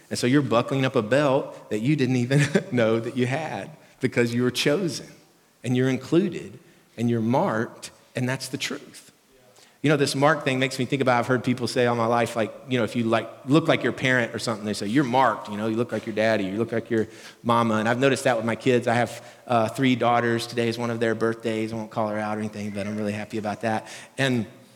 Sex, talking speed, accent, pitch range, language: male, 255 wpm, American, 115-145 Hz, English